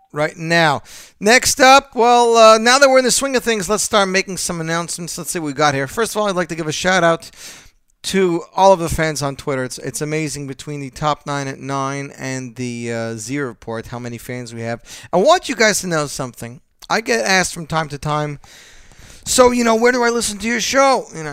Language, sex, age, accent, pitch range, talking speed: English, male, 40-59, American, 140-195 Hz, 240 wpm